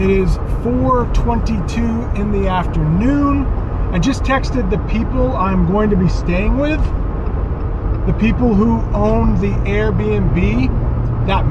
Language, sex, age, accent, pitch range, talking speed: English, male, 30-49, American, 85-105 Hz, 125 wpm